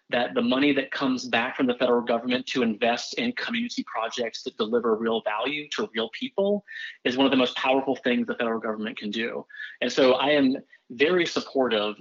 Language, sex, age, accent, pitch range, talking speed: English, male, 30-49, American, 120-160 Hz, 200 wpm